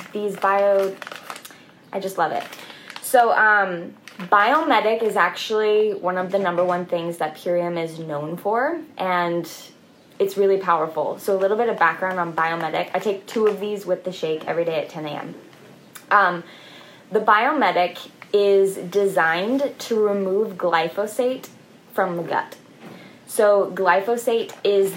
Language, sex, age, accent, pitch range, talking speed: English, female, 10-29, American, 170-205 Hz, 145 wpm